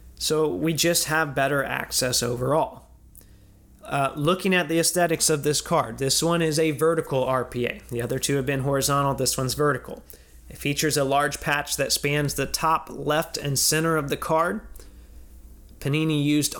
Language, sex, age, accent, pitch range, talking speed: English, male, 30-49, American, 130-150 Hz, 170 wpm